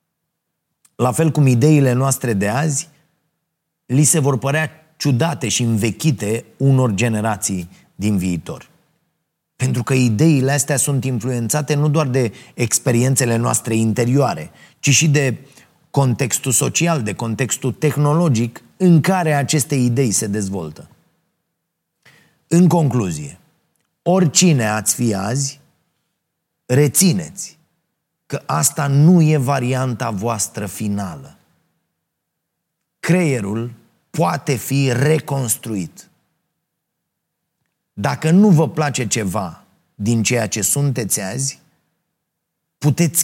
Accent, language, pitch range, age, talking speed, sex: native, Romanian, 115-155 Hz, 30-49, 100 wpm, male